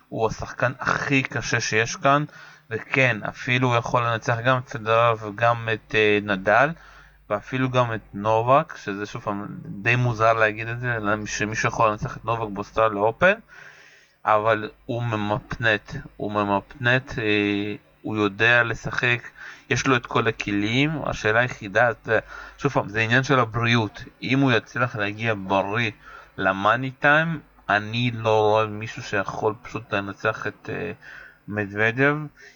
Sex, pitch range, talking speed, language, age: male, 110-140 Hz, 135 wpm, Hebrew, 30-49